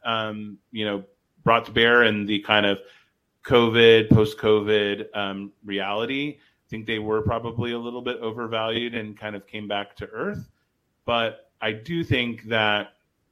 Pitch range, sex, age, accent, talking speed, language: 100-115 Hz, male, 30-49, American, 160 wpm, English